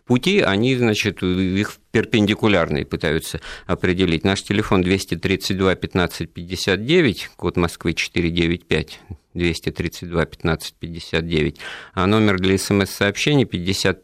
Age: 50-69